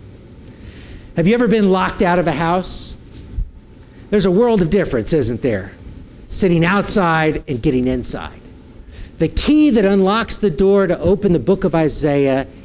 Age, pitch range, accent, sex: 50-69, 125-210 Hz, American, male